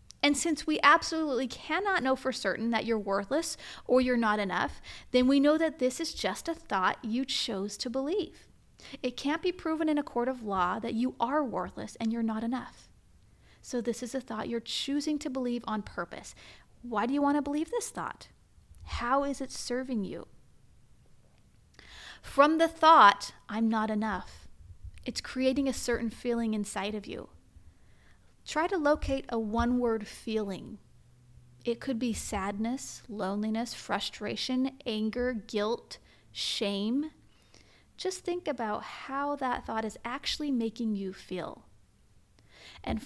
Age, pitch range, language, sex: 30-49, 215-285 Hz, English, female